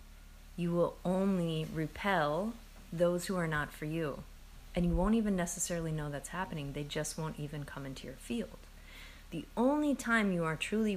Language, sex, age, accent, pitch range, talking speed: English, female, 30-49, American, 150-210 Hz, 175 wpm